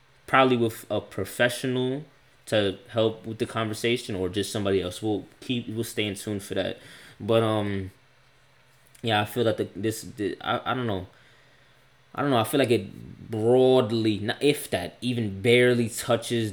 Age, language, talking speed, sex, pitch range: 20-39, English, 170 wpm, male, 100-120 Hz